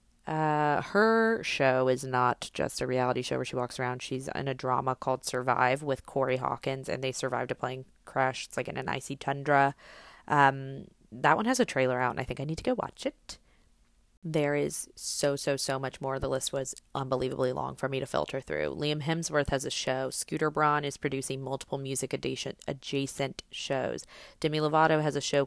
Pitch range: 130-150 Hz